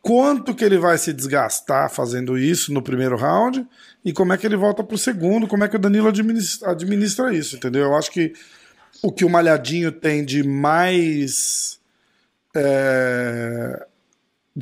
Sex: male